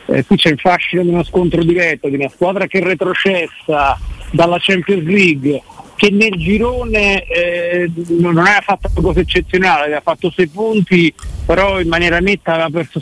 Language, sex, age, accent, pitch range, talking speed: Italian, male, 50-69, native, 160-185 Hz, 170 wpm